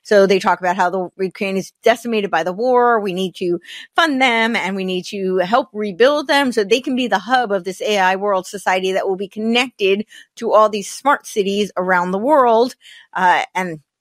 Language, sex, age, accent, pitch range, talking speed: English, female, 30-49, American, 180-225 Hz, 210 wpm